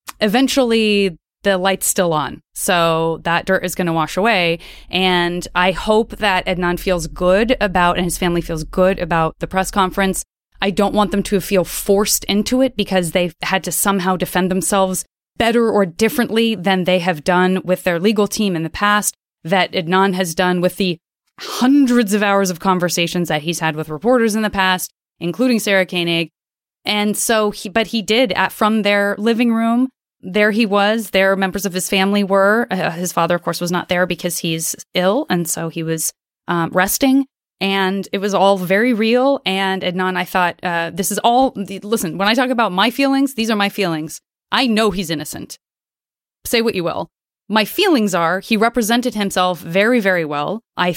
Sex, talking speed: female, 190 wpm